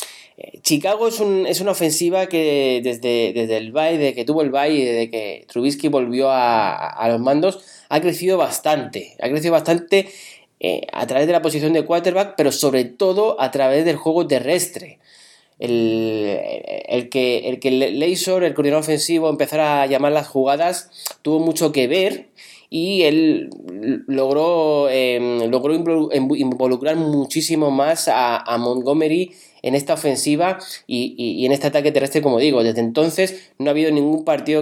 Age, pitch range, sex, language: 20-39, 130-165 Hz, male, Spanish